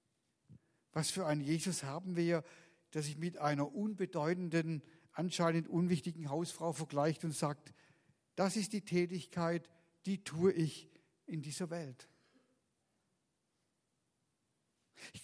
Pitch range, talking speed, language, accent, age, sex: 150-180 Hz, 110 wpm, German, German, 50-69, male